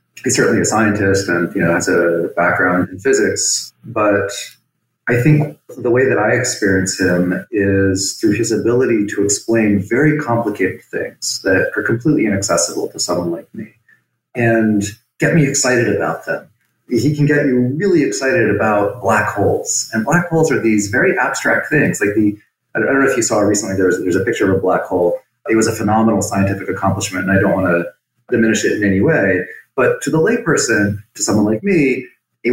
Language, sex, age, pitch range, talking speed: English, male, 30-49, 95-130 Hz, 190 wpm